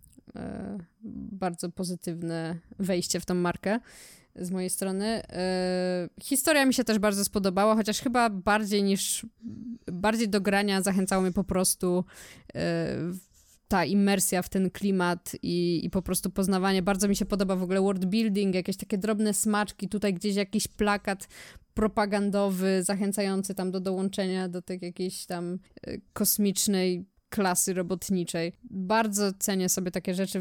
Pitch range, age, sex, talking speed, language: 180-205 Hz, 20-39, female, 140 wpm, Polish